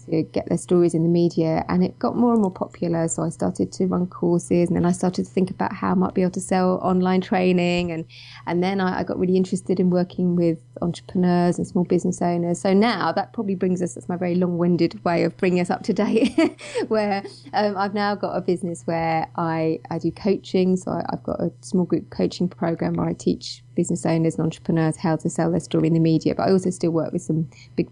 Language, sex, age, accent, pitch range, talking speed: English, female, 20-39, British, 165-185 Hz, 240 wpm